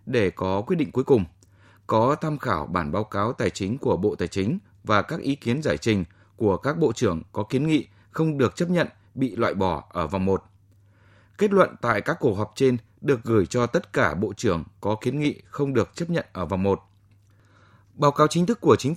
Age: 20-39